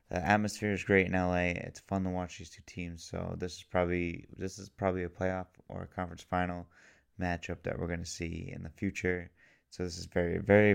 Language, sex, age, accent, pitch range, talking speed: English, male, 20-39, American, 85-95 Hz, 225 wpm